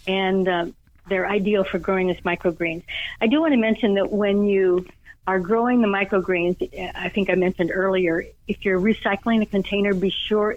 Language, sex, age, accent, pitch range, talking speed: English, female, 60-79, American, 185-220 Hz, 180 wpm